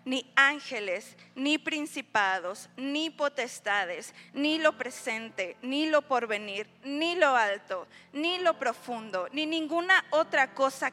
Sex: female